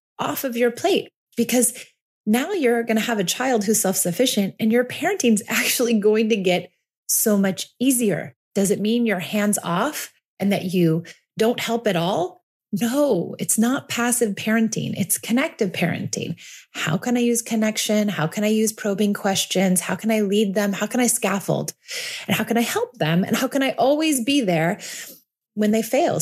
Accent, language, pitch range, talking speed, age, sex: American, English, 180-235 Hz, 190 wpm, 30-49, female